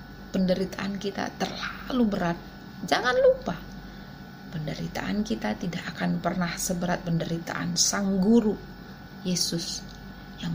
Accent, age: native, 30-49